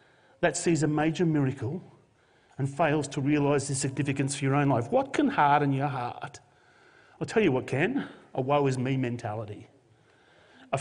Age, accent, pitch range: 40-59, Australian, 130-170 Hz